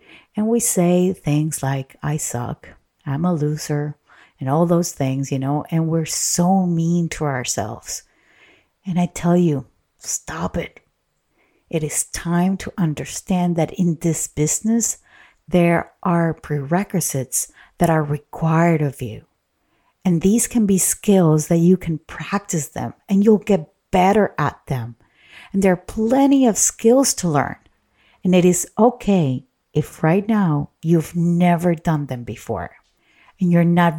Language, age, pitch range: English, 50-69, 150-190 Hz